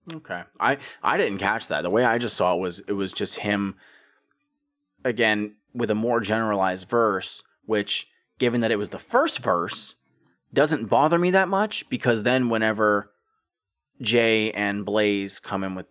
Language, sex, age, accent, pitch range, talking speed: English, male, 20-39, American, 95-115 Hz, 170 wpm